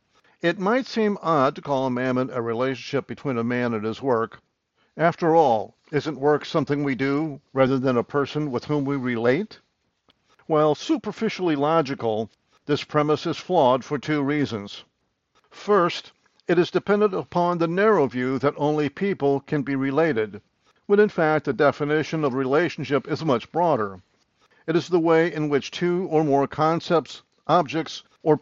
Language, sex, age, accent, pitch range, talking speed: English, male, 50-69, American, 135-170 Hz, 165 wpm